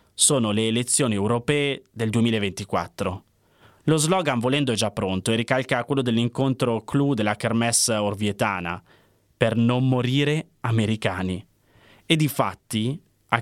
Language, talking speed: Italian, 125 wpm